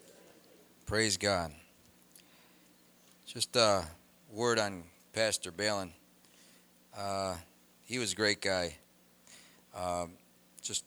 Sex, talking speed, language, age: male, 90 wpm, English, 40-59